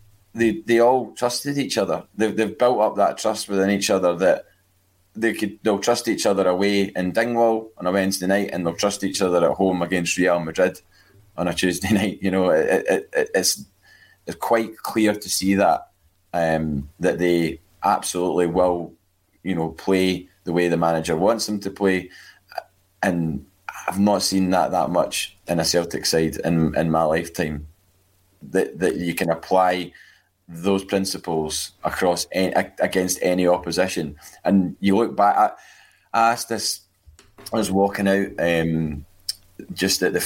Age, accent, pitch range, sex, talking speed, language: 20-39, British, 85-100 Hz, male, 170 wpm, English